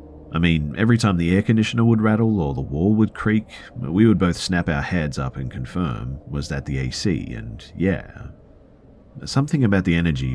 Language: English